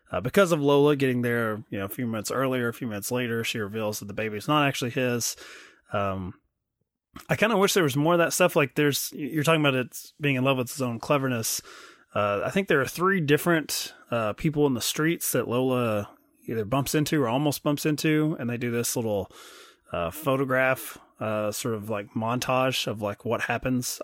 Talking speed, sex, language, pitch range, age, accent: 215 wpm, male, English, 120-150 Hz, 20-39, American